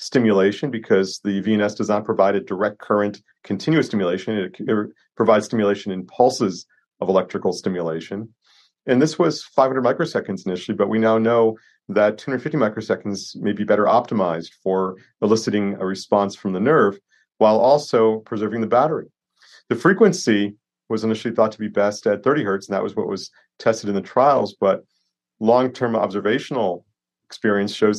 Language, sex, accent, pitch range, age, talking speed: English, male, American, 100-115 Hz, 40-59, 165 wpm